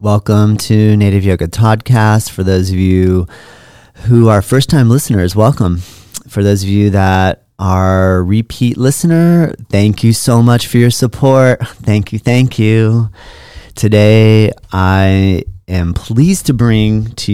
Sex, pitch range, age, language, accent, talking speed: male, 95-115 Hz, 40-59, English, American, 140 wpm